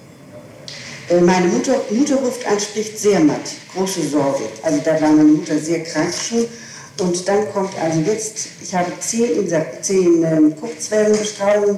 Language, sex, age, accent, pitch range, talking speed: German, female, 60-79, German, 160-220 Hz, 140 wpm